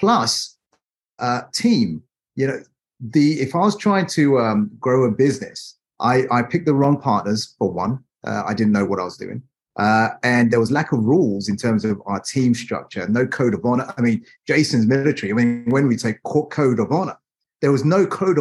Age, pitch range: 30-49, 115-170 Hz